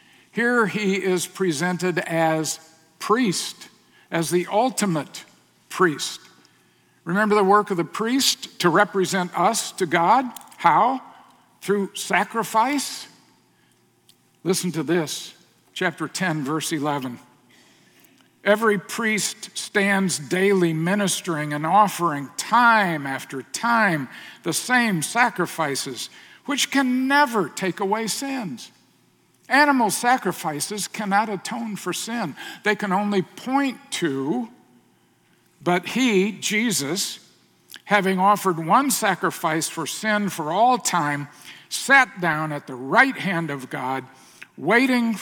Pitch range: 160-220 Hz